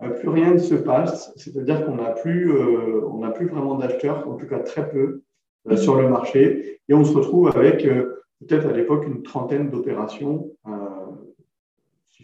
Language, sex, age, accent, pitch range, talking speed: French, male, 40-59, French, 125-155 Hz, 175 wpm